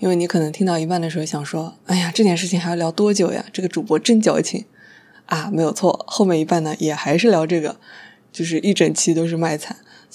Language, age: Chinese, 20-39